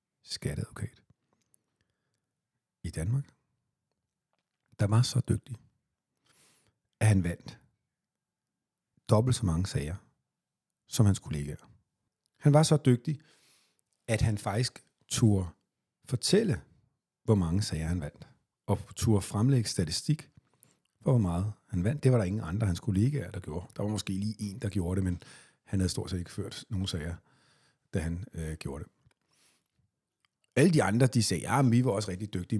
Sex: male